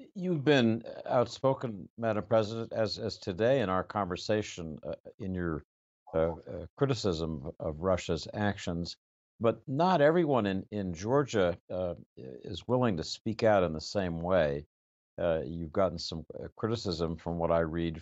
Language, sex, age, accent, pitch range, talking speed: English, male, 60-79, American, 85-115 Hz, 150 wpm